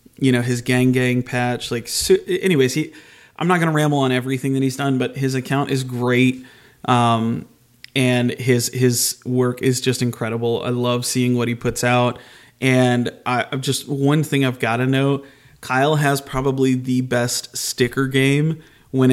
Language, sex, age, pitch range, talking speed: English, male, 30-49, 120-135 Hz, 175 wpm